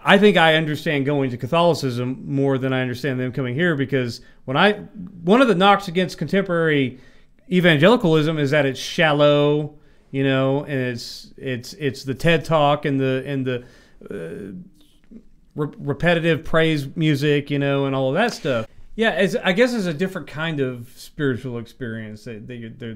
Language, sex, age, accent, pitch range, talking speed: English, male, 40-59, American, 130-165 Hz, 170 wpm